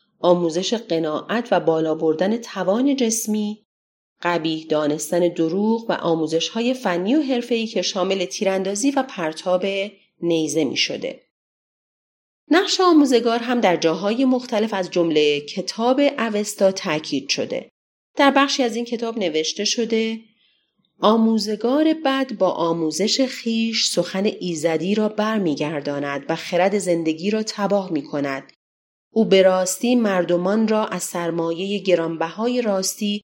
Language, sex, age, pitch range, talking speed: Persian, female, 30-49, 170-230 Hz, 120 wpm